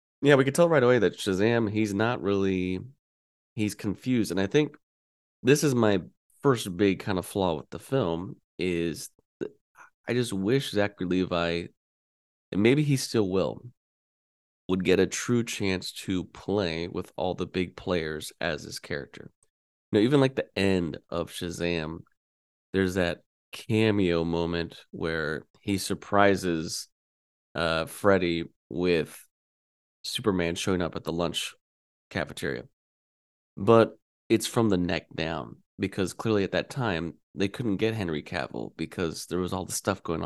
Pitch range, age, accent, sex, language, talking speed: 85-110 Hz, 20-39, American, male, English, 150 wpm